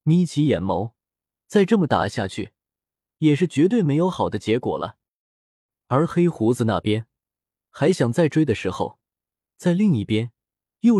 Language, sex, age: Chinese, male, 20-39